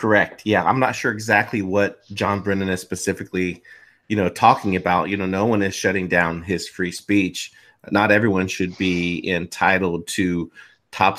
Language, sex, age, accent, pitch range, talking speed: English, male, 30-49, American, 95-115 Hz, 170 wpm